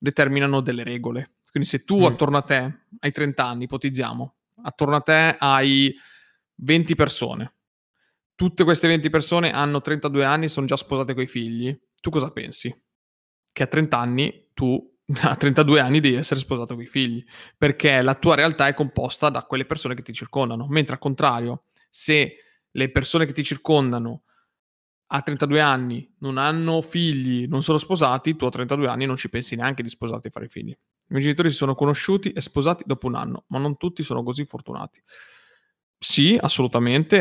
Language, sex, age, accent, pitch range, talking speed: Italian, male, 20-39, native, 125-150 Hz, 175 wpm